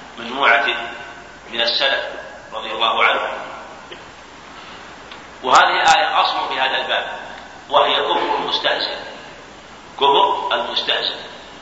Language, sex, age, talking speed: Arabic, male, 50-69, 90 wpm